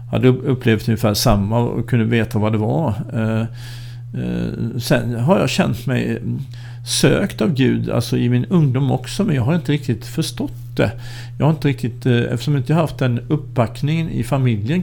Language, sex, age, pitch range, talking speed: Swedish, male, 50-69, 115-140 Hz, 175 wpm